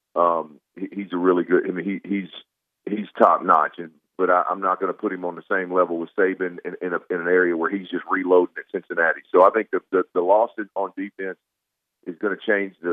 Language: English